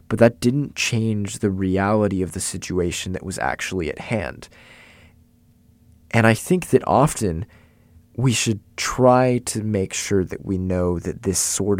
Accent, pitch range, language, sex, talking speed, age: American, 90-115 Hz, English, male, 160 wpm, 20-39